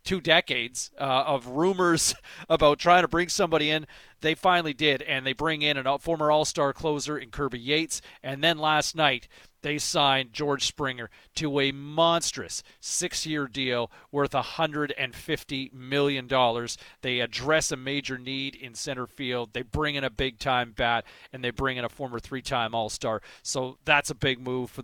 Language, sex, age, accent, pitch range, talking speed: English, male, 40-59, American, 130-170 Hz, 165 wpm